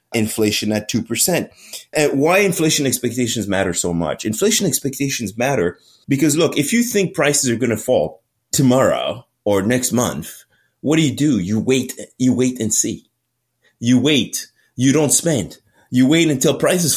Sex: male